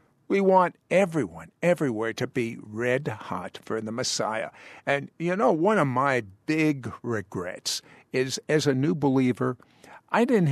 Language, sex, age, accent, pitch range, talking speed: English, male, 60-79, American, 120-155 Hz, 150 wpm